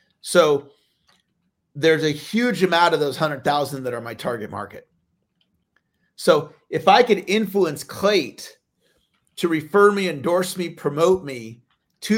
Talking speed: 135 wpm